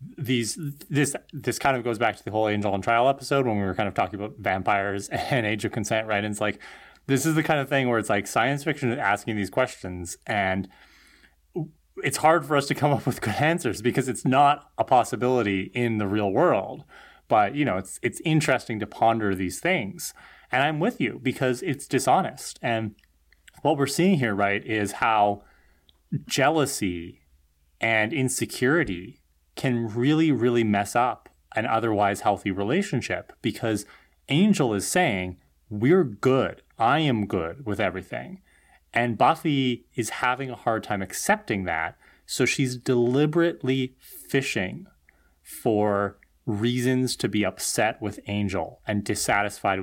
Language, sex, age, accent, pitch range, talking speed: English, male, 30-49, American, 100-135 Hz, 165 wpm